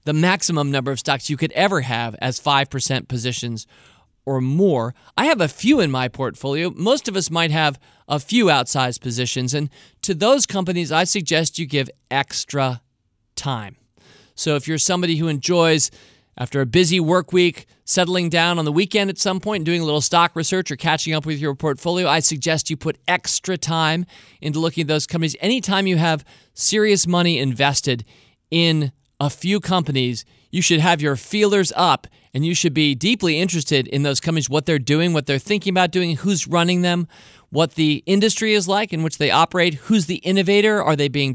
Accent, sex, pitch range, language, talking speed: American, male, 140-180 Hz, English, 190 wpm